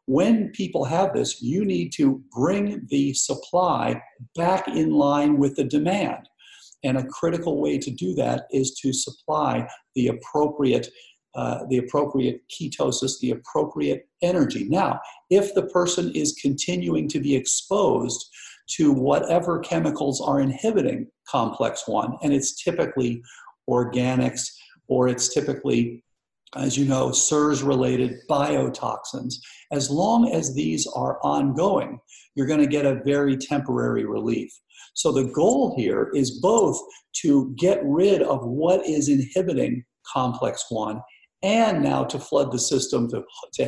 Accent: American